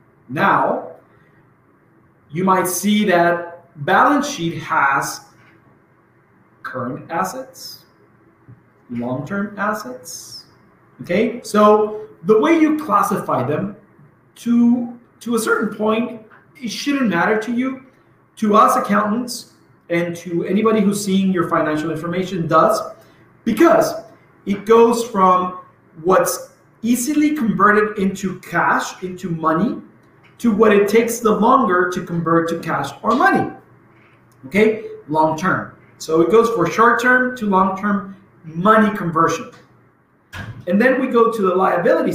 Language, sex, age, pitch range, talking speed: English, male, 40-59, 170-230 Hz, 115 wpm